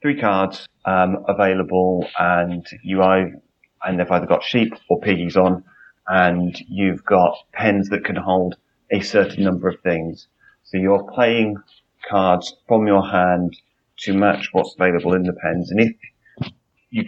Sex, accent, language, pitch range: male, British, English, 90-100 Hz